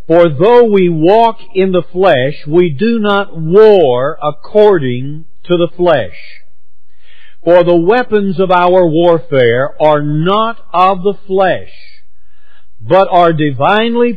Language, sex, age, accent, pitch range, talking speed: English, male, 50-69, American, 155-210 Hz, 125 wpm